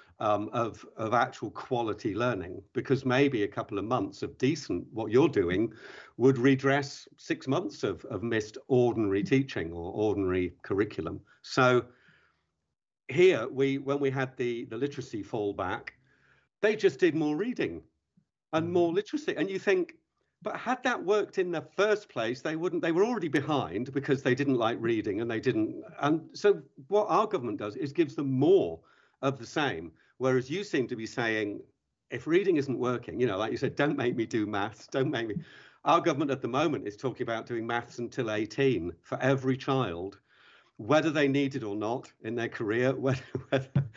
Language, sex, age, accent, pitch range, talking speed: English, male, 50-69, British, 125-170 Hz, 185 wpm